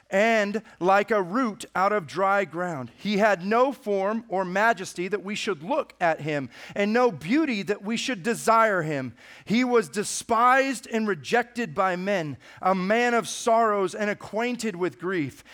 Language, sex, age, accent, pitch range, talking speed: English, male, 40-59, American, 175-225 Hz, 165 wpm